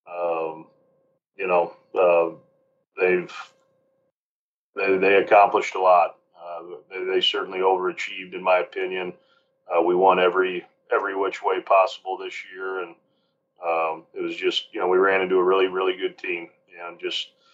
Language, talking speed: English, 155 wpm